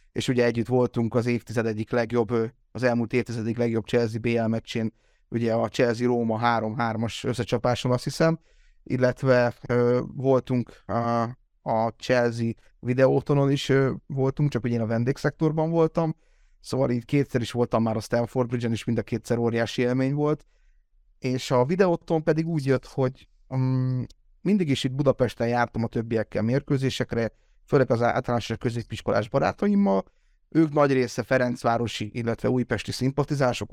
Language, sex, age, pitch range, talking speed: Hungarian, male, 30-49, 115-135 Hz, 145 wpm